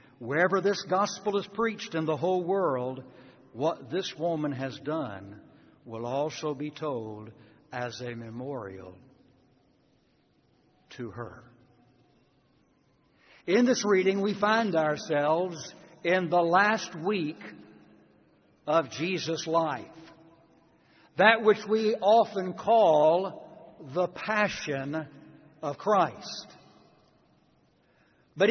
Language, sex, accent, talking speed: English, male, American, 95 wpm